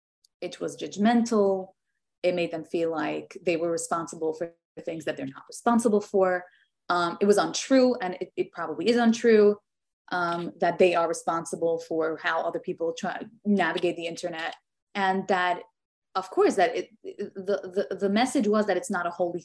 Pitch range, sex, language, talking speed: 175-210 Hz, female, English, 180 wpm